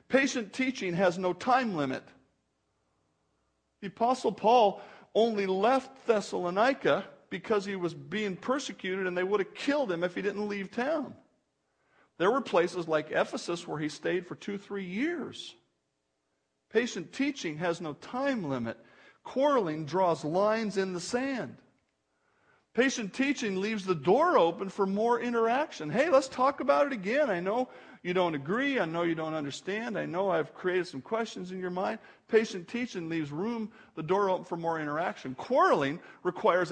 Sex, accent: male, American